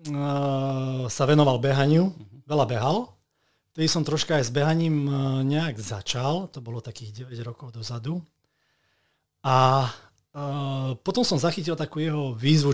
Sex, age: male, 40-59